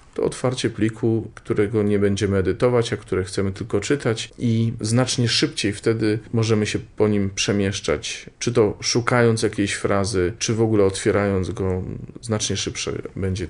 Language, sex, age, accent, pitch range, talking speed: Polish, male, 40-59, native, 100-120 Hz, 150 wpm